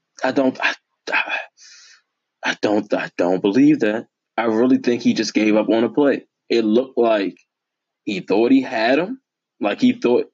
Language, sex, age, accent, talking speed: English, male, 20-39, American, 175 wpm